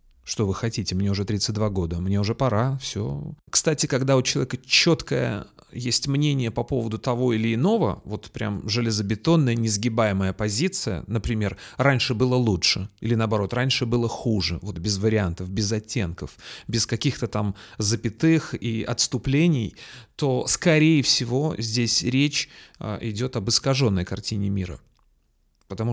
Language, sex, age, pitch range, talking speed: Russian, male, 30-49, 105-135 Hz, 135 wpm